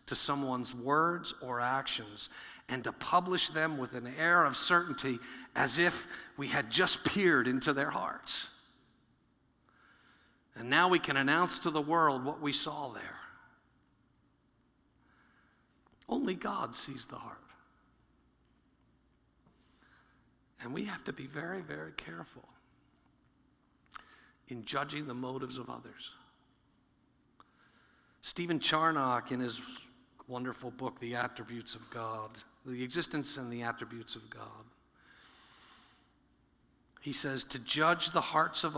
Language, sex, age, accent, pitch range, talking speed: English, male, 50-69, American, 120-160 Hz, 120 wpm